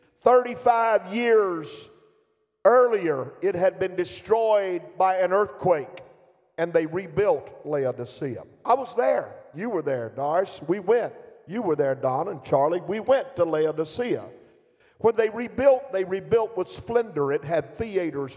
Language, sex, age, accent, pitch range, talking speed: English, male, 50-69, American, 170-235 Hz, 140 wpm